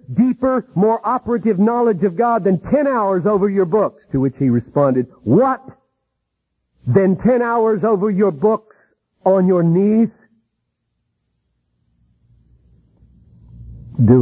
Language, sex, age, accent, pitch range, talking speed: English, male, 50-69, American, 145-240 Hz, 115 wpm